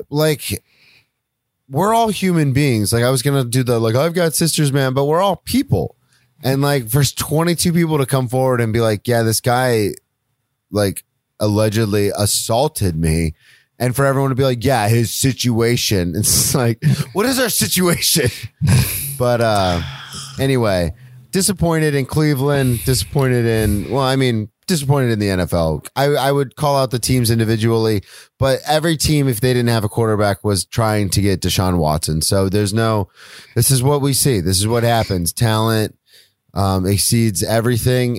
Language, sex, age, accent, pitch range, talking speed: English, male, 30-49, American, 105-135 Hz, 170 wpm